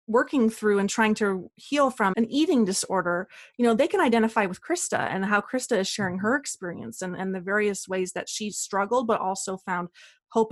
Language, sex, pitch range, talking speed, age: English, female, 195-230 Hz, 205 wpm, 30-49